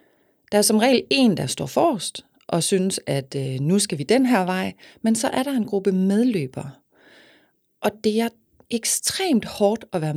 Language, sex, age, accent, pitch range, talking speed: Danish, female, 30-49, native, 150-215 Hz, 190 wpm